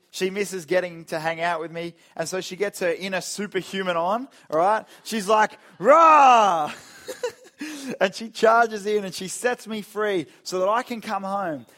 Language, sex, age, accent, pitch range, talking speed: English, male, 20-39, Australian, 150-205 Hz, 185 wpm